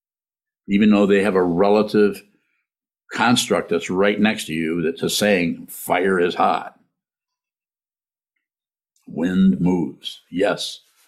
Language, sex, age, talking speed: English, male, 60-79, 115 wpm